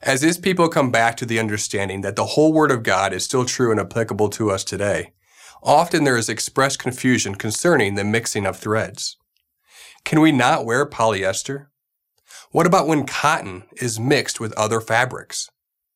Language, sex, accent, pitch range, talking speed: English, male, American, 105-140 Hz, 175 wpm